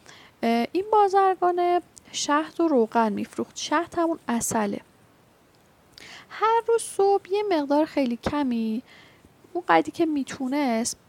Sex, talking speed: female, 110 wpm